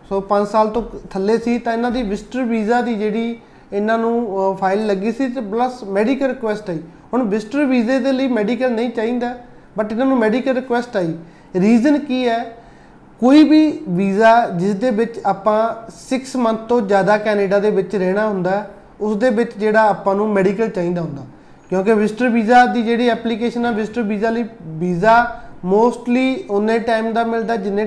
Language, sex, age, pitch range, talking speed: Punjabi, male, 30-49, 210-245 Hz, 155 wpm